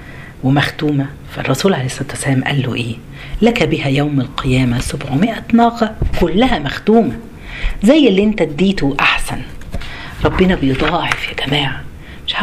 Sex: female